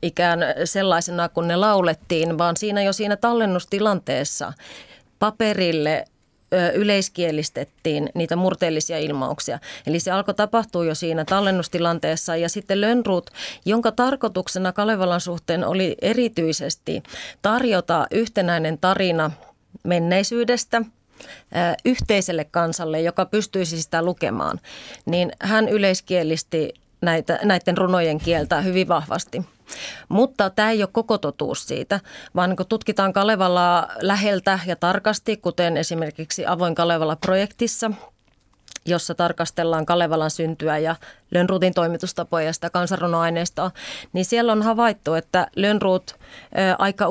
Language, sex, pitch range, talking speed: Finnish, female, 165-200 Hz, 110 wpm